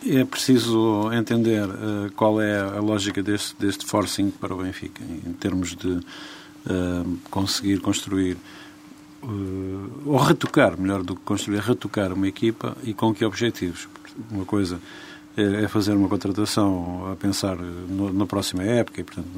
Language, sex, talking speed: Portuguese, male, 140 wpm